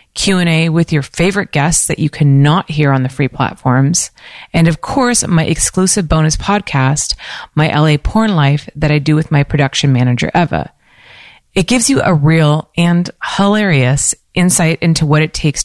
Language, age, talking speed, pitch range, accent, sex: English, 30-49, 170 wpm, 140-180 Hz, American, female